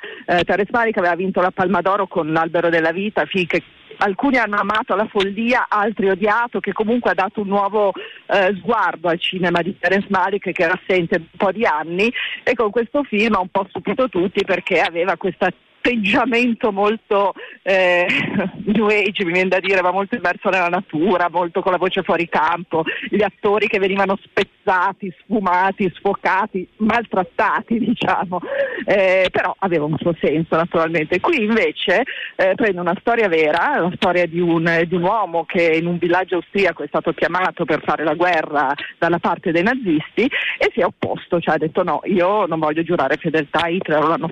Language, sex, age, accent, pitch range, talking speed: Italian, female, 40-59, native, 170-205 Hz, 180 wpm